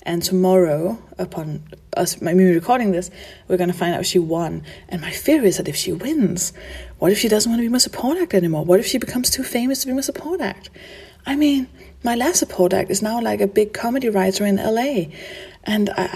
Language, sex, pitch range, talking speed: English, female, 180-225 Hz, 225 wpm